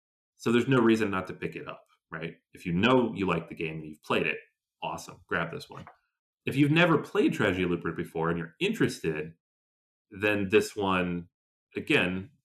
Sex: male